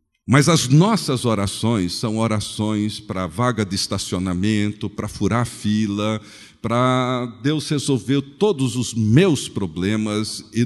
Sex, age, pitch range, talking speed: male, 50-69, 100-145 Hz, 120 wpm